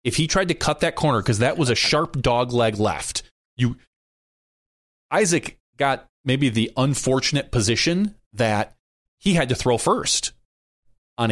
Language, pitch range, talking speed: English, 110-145 Hz, 150 wpm